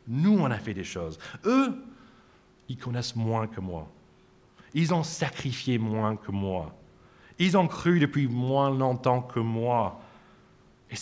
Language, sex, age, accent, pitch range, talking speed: French, male, 40-59, French, 100-130 Hz, 145 wpm